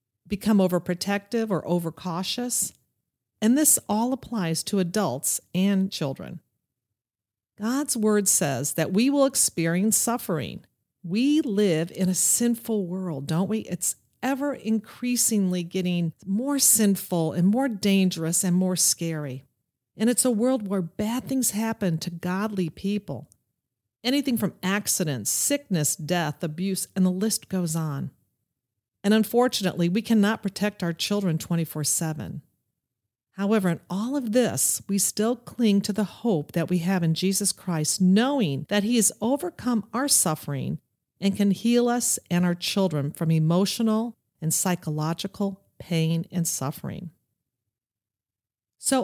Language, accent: English, American